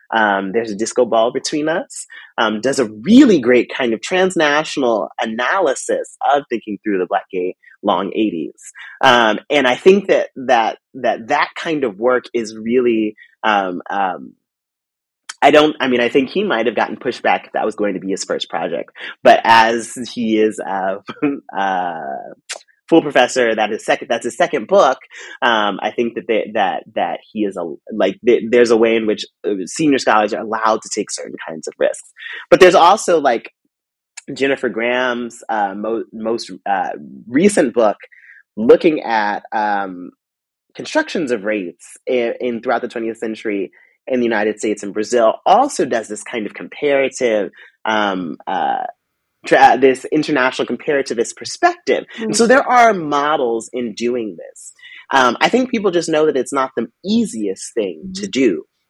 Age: 30-49